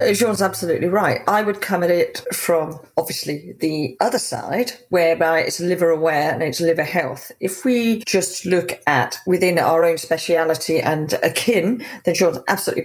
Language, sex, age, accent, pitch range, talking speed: English, female, 40-59, British, 165-205 Hz, 165 wpm